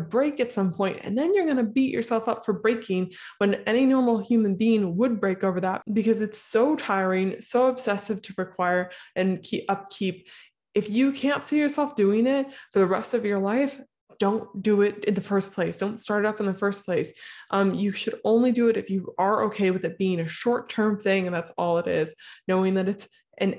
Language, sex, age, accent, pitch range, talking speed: English, female, 20-39, American, 185-220 Hz, 220 wpm